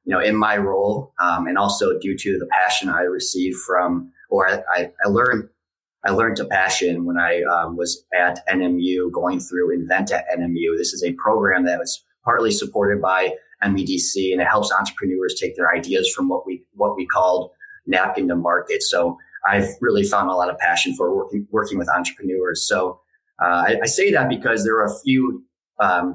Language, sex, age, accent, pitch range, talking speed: English, male, 30-49, American, 90-135 Hz, 195 wpm